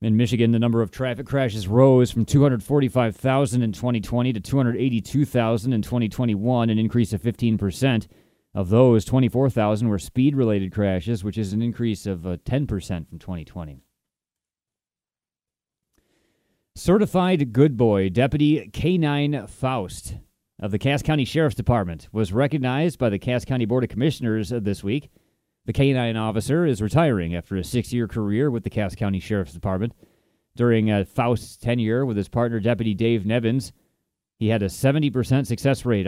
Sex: male